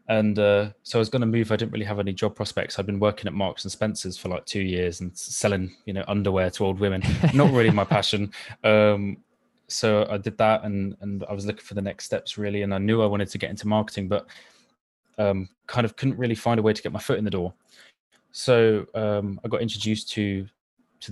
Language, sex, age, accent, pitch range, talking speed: English, male, 20-39, British, 95-110 Hz, 240 wpm